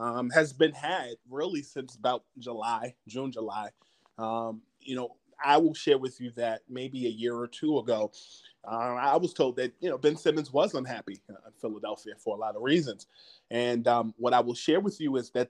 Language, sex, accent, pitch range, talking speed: English, male, American, 120-145 Hz, 210 wpm